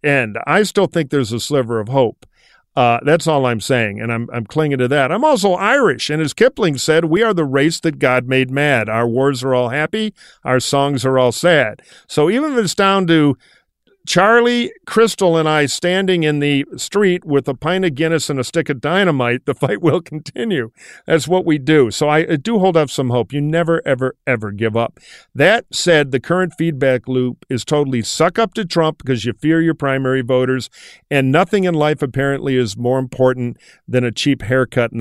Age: 50-69